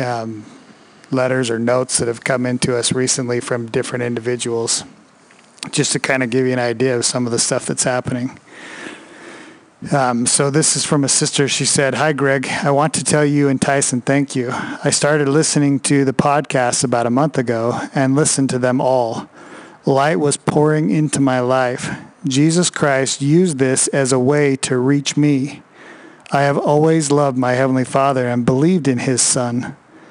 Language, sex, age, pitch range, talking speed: English, male, 40-59, 125-150 Hz, 180 wpm